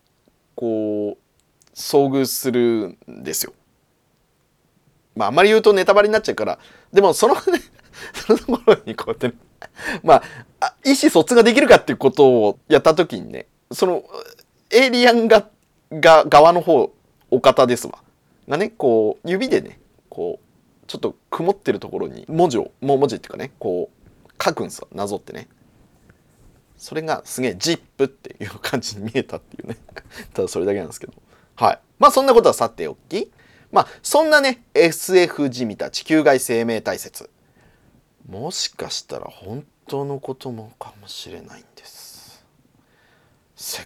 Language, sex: Japanese, male